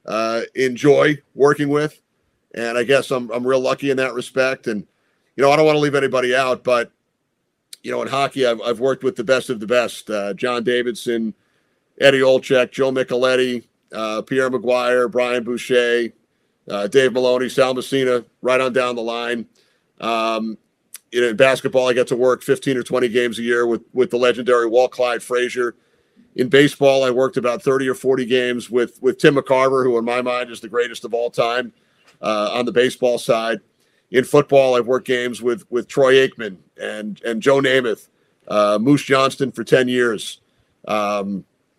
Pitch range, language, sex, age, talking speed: 120-130 Hz, English, male, 40-59, 185 wpm